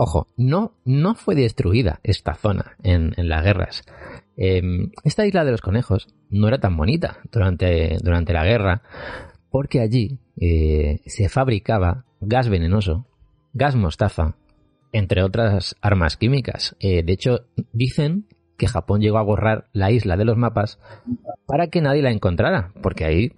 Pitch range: 95-125 Hz